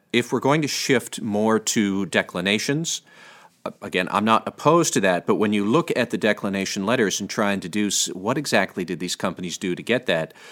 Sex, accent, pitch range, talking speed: male, American, 100-125 Hz, 200 wpm